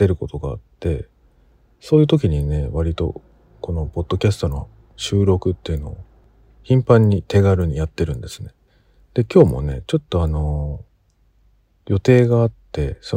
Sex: male